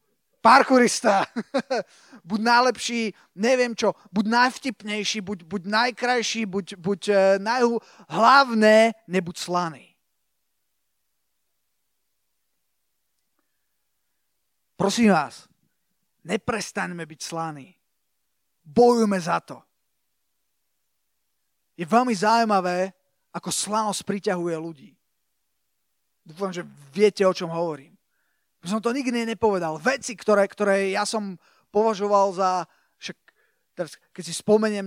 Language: Slovak